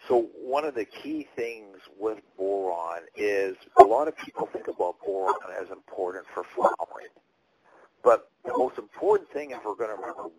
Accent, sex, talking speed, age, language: American, male, 175 wpm, 50-69, English